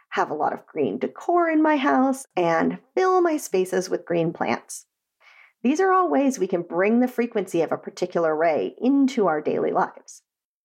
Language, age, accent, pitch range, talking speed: English, 40-59, American, 185-265 Hz, 185 wpm